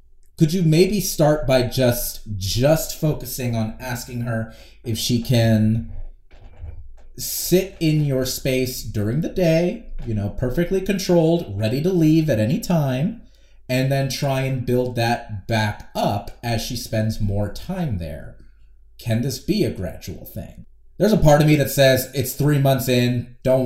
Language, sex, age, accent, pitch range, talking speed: English, male, 30-49, American, 105-135 Hz, 160 wpm